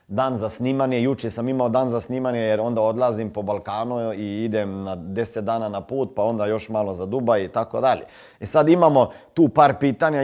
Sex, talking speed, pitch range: male, 215 wpm, 110-145 Hz